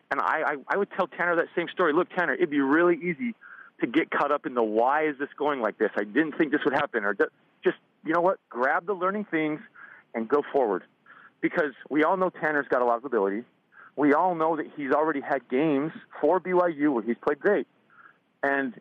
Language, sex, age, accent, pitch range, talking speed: English, male, 30-49, American, 140-185 Hz, 225 wpm